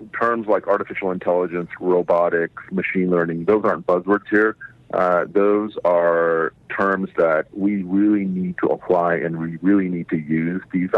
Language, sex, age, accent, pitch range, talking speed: English, male, 40-59, American, 85-100 Hz, 155 wpm